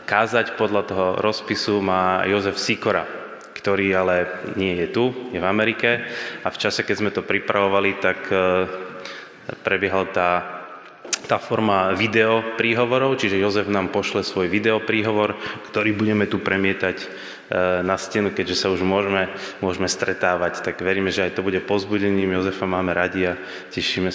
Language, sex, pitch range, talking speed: Slovak, male, 90-105 Hz, 145 wpm